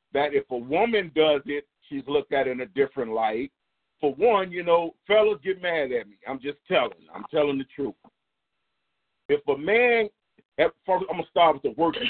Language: English